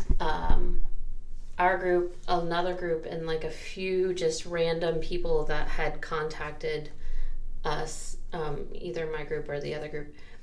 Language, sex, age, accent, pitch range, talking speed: English, female, 30-49, American, 145-170 Hz, 140 wpm